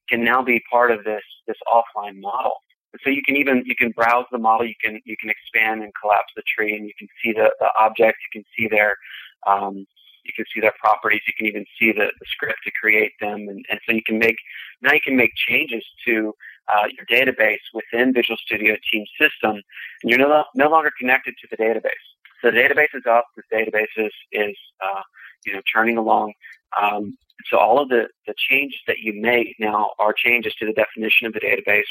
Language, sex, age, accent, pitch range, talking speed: English, male, 30-49, American, 110-120 Hz, 220 wpm